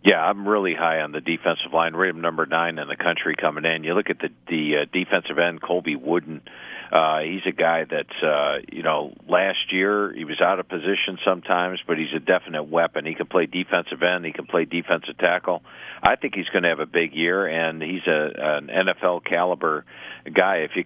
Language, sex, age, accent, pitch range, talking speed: English, male, 50-69, American, 80-95 Hz, 215 wpm